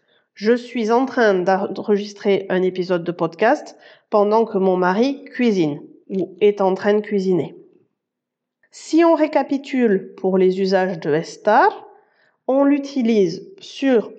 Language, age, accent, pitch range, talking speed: French, 30-49, French, 200-260 Hz, 130 wpm